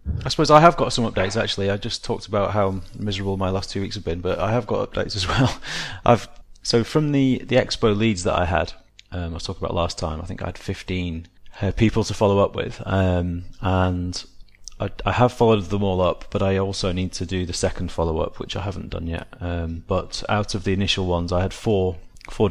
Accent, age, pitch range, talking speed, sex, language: British, 30-49, 90-105 Hz, 235 wpm, male, English